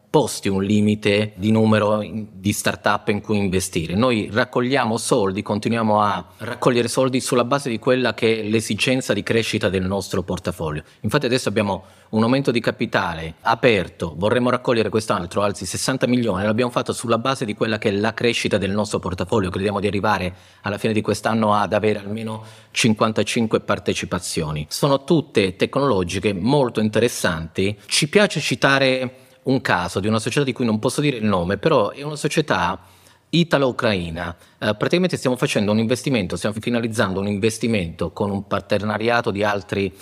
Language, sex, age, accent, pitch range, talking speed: Italian, male, 30-49, native, 100-125 Hz, 160 wpm